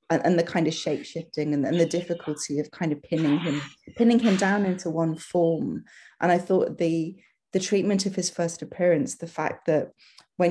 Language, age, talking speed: English, 30-49, 205 wpm